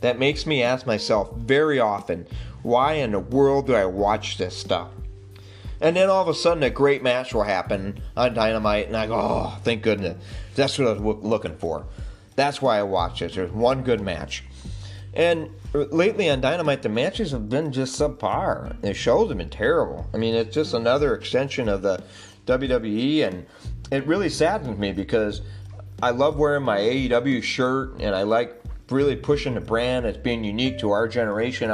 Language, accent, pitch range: English, American, 100-140 Hz